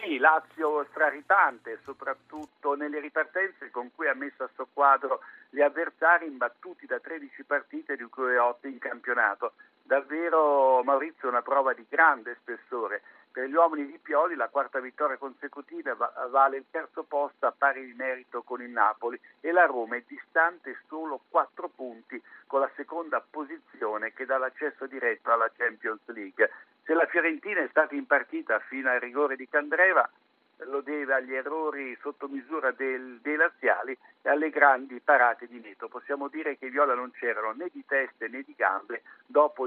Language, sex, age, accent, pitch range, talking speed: Italian, male, 60-79, native, 130-160 Hz, 165 wpm